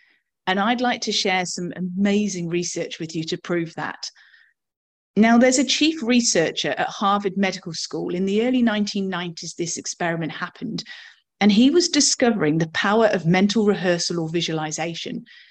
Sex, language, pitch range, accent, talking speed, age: female, English, 175-255 Hz, British, 155 wpm, 30-49